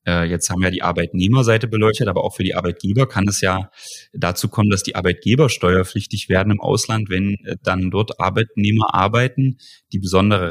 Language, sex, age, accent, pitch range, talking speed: German, male, 30-49, German, 95-110 Hz, 170 wpm